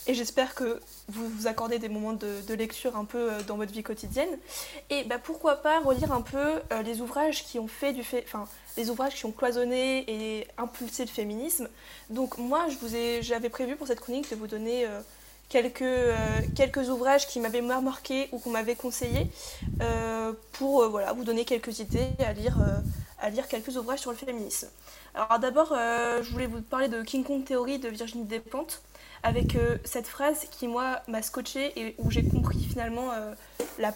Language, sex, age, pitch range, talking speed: French, female, 20-39, 235-270 Hz, 200 wpm